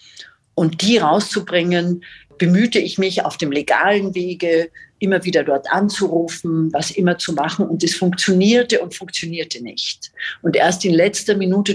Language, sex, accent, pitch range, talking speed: German, female, German, 165-200 Hz, 150 wpm